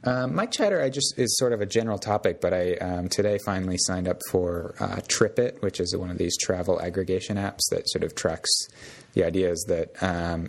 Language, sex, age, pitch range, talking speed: English, male, 20-39, 85-105 Hz, 215 wpm